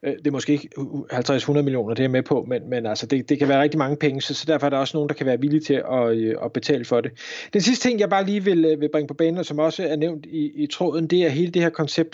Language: Danish